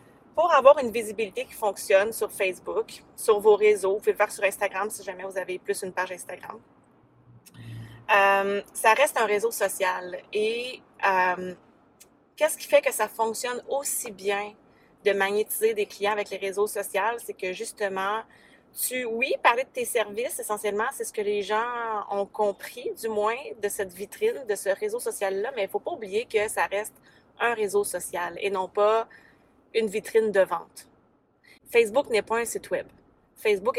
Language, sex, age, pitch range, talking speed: French, female, 30-49, 195-260 Hz, 180 wpm